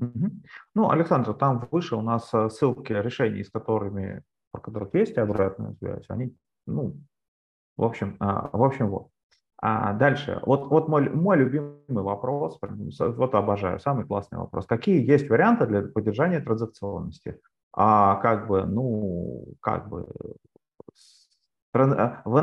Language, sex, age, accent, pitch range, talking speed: Russian, male, 30-49, native, 100-140 Hz, 120 wpm